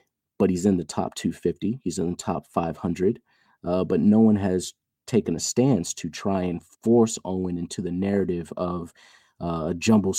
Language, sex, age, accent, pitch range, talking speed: English, male, 40-59, American, 85-100 Hz, 175 wpm